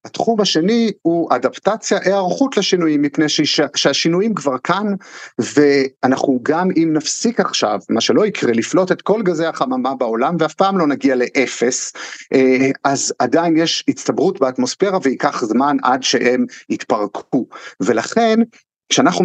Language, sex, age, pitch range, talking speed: Hebrew, male, 50-69, 135-190 Hz, 130 wpm